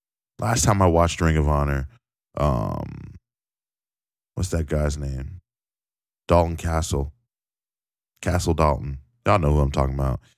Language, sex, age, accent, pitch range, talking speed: English, male, 20-39, American, 75-90 Hz, 125 wpm